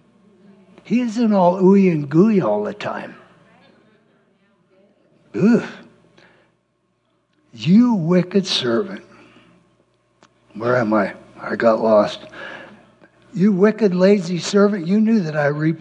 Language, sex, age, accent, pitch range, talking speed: English, male, 60-79, American, 170-215 Hz, 105 wpm